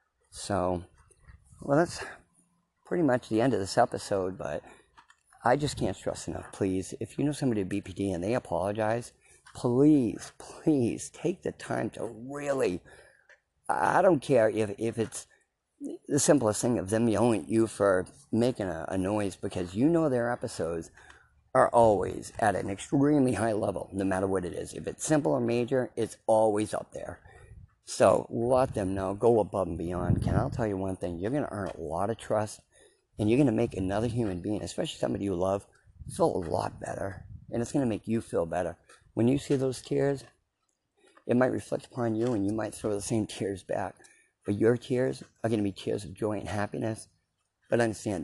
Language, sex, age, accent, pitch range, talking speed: English, male, 50-69, American, 100-120 Hz, 195 wpm